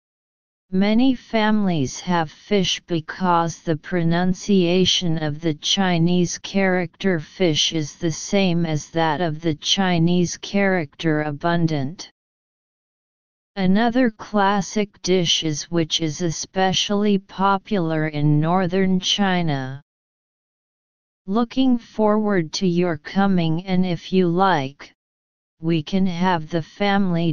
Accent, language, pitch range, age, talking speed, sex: American, English, 160-195 Hz, 40-59, 105 wpm, female